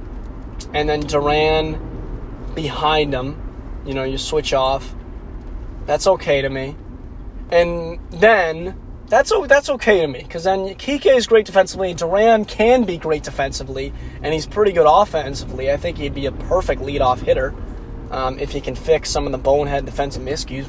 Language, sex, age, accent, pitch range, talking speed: English, male, 20-39, American, 130-175 Hz, 160 wpm